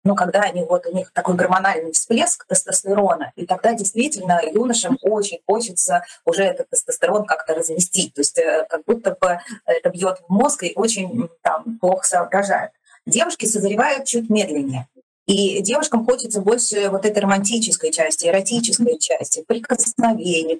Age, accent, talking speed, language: 20-39, native, 150 wpm, Russian